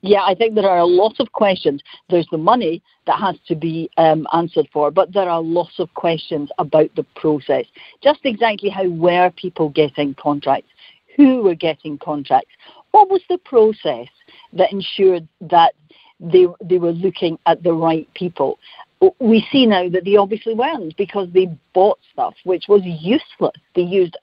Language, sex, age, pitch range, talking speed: English, female, 60-79, 165-225 Hz, 175 wpm